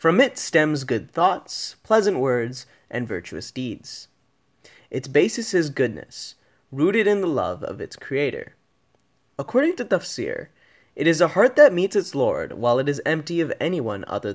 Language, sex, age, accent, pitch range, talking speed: English, male, 20-39, American, 125-190 Hz, 165 wpm